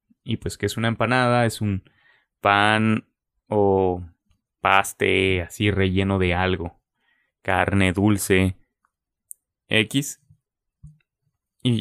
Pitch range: 95-115 Hz